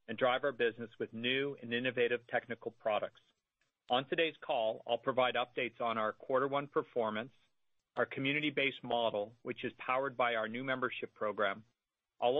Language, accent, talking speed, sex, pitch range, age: English, American, 160 wpm, male, 115-145 Hz, 40-59